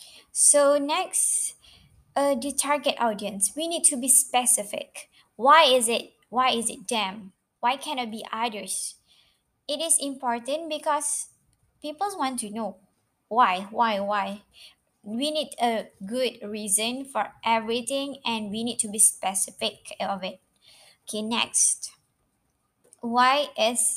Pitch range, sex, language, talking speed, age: 220-290 Hz, male, Malay, 130 wpm, 20-39